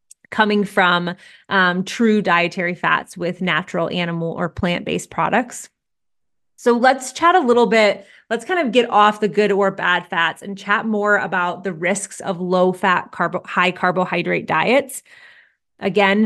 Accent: American